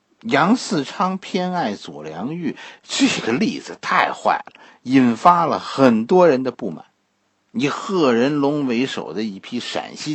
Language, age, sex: Chinese, 50-69, male